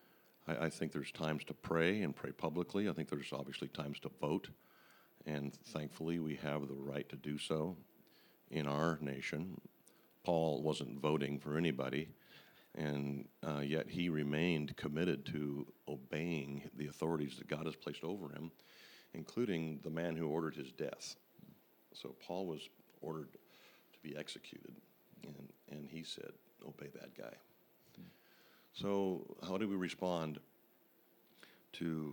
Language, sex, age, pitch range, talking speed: English, male, 50-69, 75-85 Hz, 140 wpm